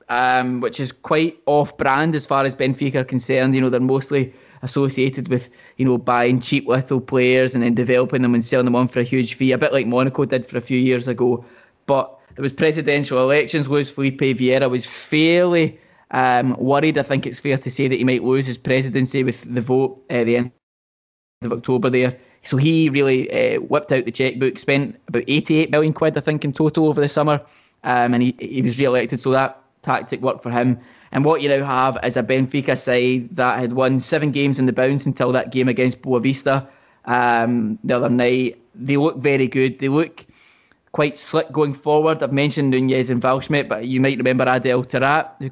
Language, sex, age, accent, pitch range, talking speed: English, male, 20-39, British, 125-145 Hz, 210 wpm